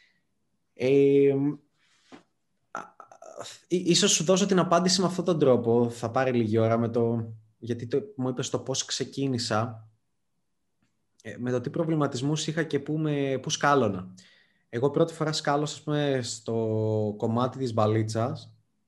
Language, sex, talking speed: Greek, male, 125 wpm